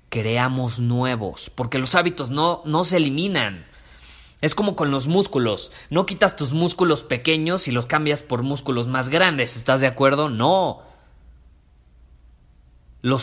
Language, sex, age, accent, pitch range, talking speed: Spanish, male, 30-49, Mexican, 110-155 Hz, 140 wpm